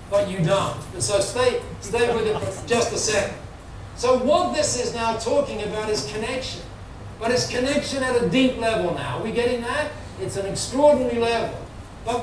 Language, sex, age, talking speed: English, male, 60-79, 185 wpm